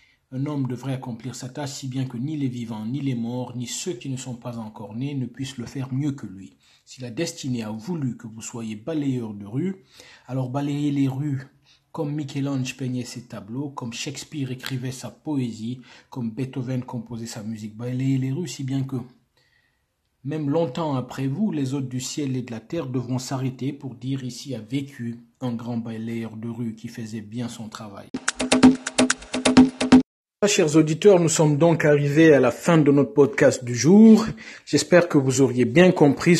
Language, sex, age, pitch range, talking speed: French, male, 50-69, 125-145 Hz, 190 wpm